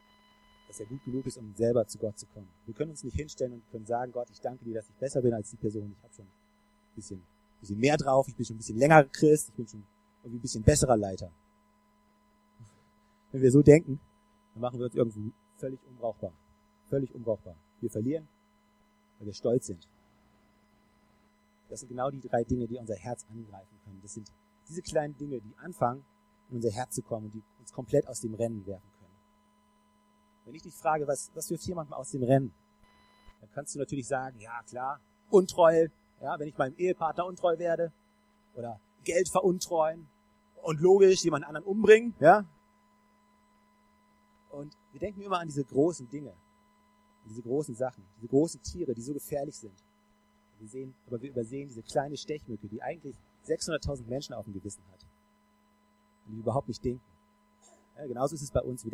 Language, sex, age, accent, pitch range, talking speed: German, male, 30-49, German, 110-185 Hz, 190 wpm